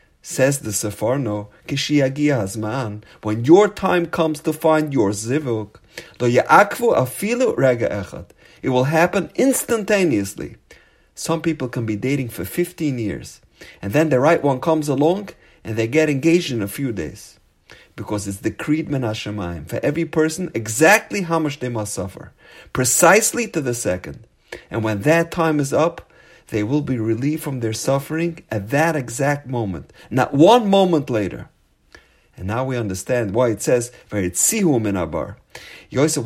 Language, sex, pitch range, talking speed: English, male, 110-155 Hz, 140 wpm